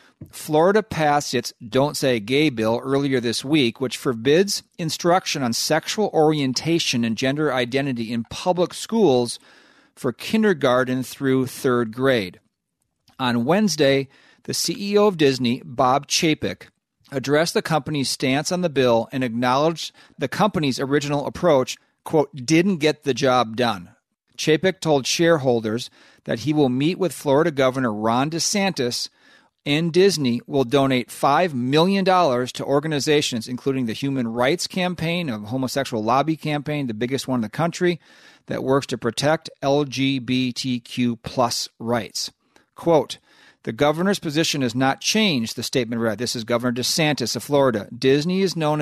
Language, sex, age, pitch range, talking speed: English, male, 40-59, 125-165 Hz, 140 wpm